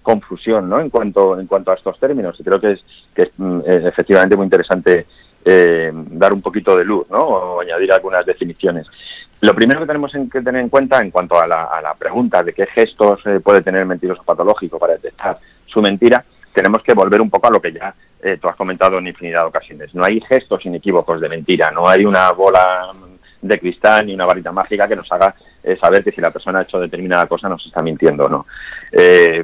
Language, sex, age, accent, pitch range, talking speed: Spanish, male, 30-49, Spanish, 90-120 Hz, 220 wpm